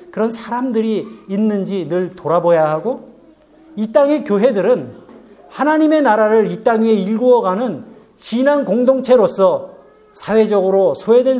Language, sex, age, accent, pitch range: Korean, male, 40-59, native, 170-235 Hz